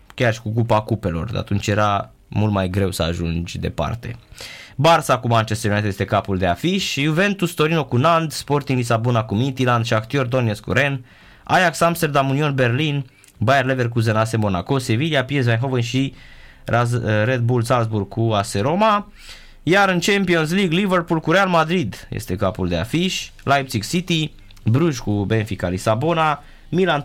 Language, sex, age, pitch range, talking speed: Romanian, male, 20-39, 105-145 Hz, 150 wpm